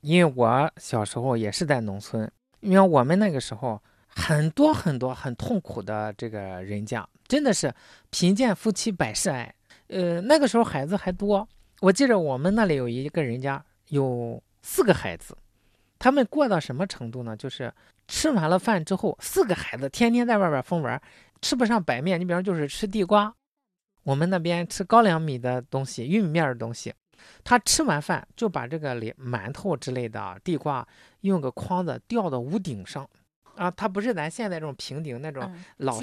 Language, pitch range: Chinese, 130-215 Hz